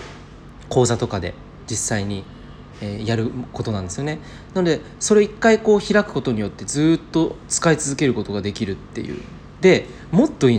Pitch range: 110-175 Hz